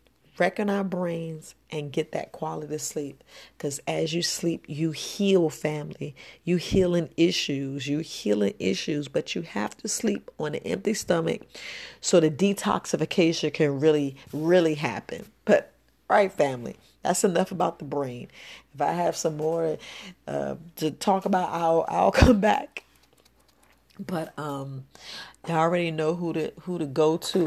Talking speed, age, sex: 155 wpm, 40-59, female